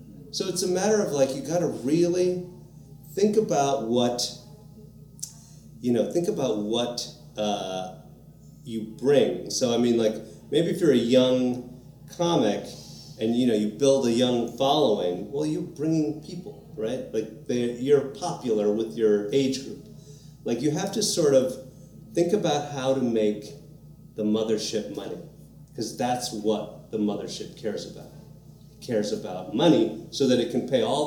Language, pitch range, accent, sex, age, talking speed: English, 110-150 Hz, American, male, 30-49, 155 wpm